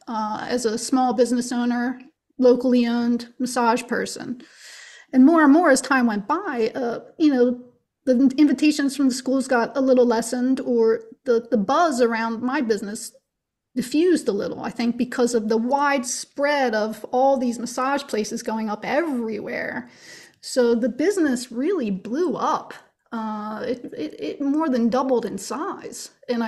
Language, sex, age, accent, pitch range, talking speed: English, female, 30-49, American, 235-280 Hz, 160 wpm